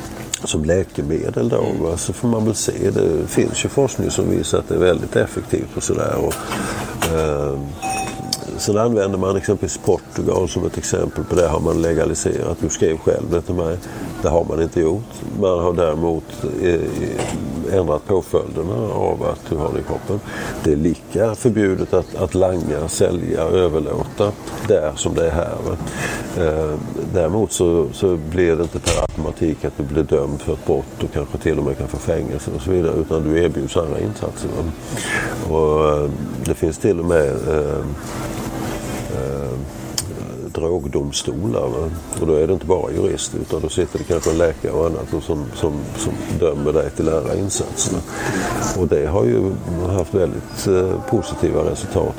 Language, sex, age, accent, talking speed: Swedish, male, 50-69, native, 160 wpm